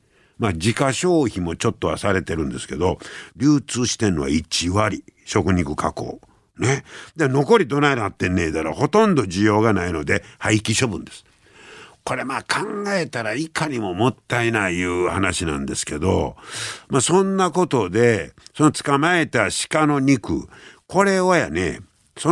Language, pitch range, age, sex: Japanese, 100-160 Hz, 60-79, male